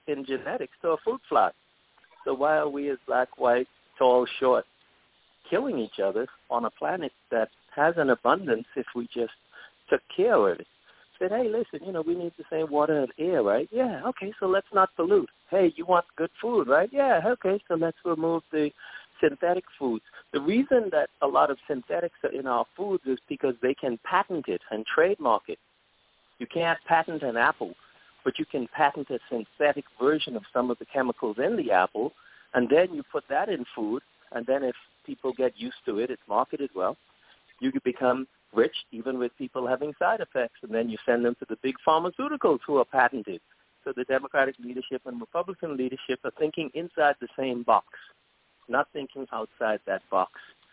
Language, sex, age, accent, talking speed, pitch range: English, male, 50-69, American, 195 wpm, 125-190 Hz